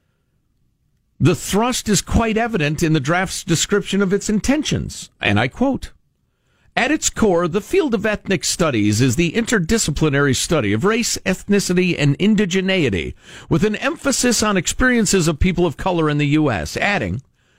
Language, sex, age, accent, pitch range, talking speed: English, male, 50-69, American, 135-220 Hz, 155 wpm